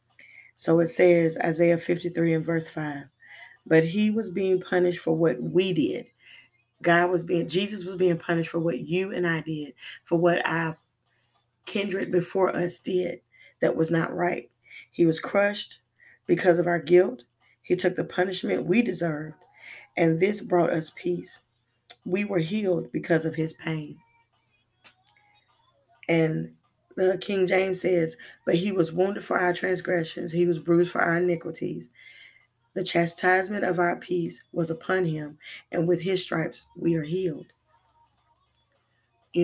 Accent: American